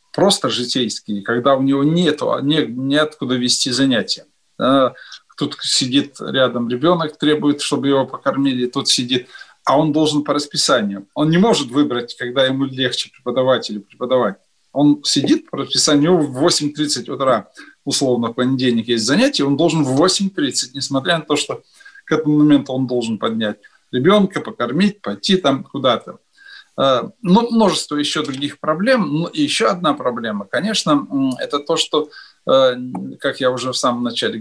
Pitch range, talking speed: 125-170 Hz, 155 wpm